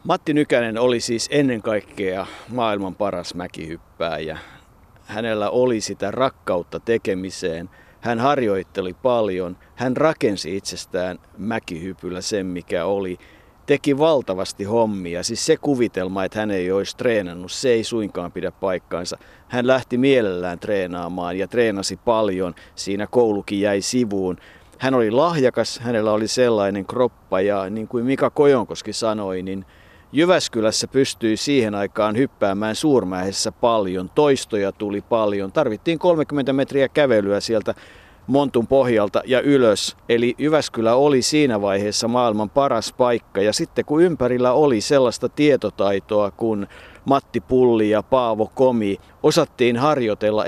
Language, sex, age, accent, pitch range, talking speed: Finnish, male, 50-69, native, 100-130 Hz, 125 wpm